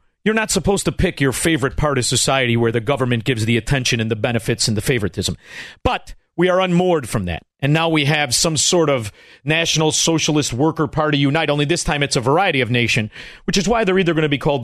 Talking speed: 235 wpm